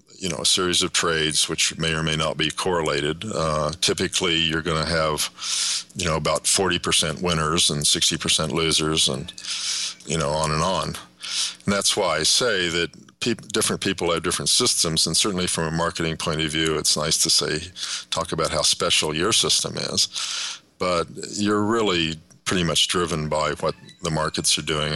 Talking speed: 180 wpm